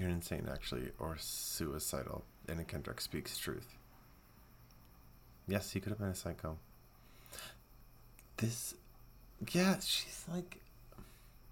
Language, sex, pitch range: English, male, 70-110 Hz